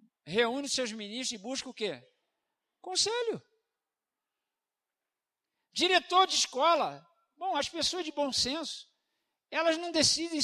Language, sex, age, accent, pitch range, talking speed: Portuguese, male, 60-79, Brazilian, 255-330 Hz, 115 wpm